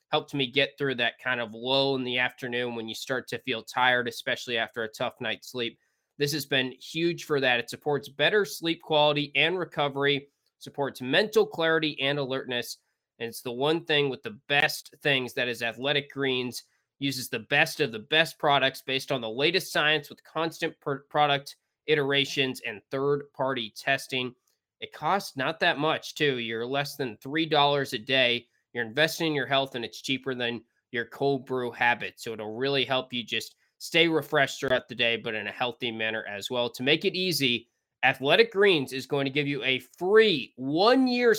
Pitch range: 125-150 Hz